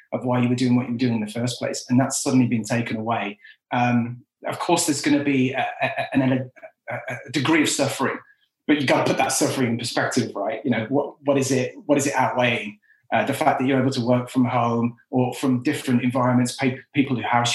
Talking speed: 235 wpm